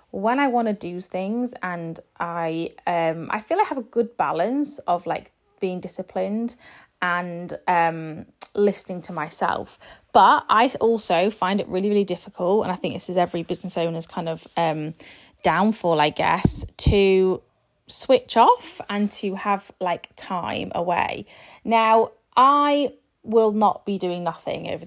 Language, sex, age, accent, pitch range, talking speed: English, female, 20-39, British, 175-220 Hz, 155 wpm